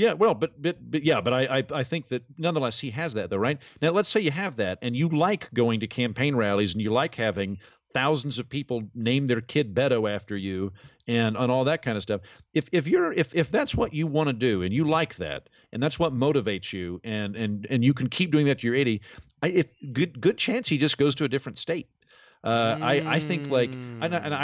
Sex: male